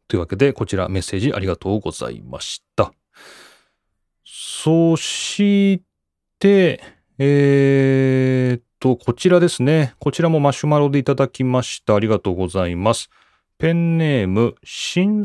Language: Japanese